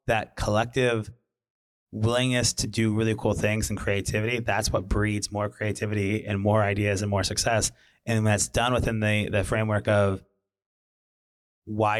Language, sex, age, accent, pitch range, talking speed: English, male, 30-49, American, 100-115 Hz, 155 wpm